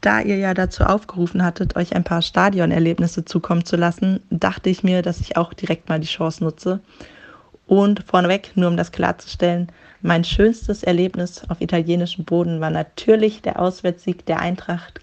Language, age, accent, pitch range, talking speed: German, 20-39, German, 170-190 Hz, 170 wpm